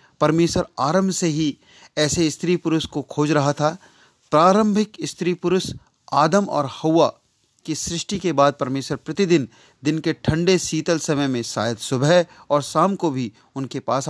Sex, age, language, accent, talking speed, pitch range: male, 40-59, Hindi, native, 160 wpm, 130-170 Hz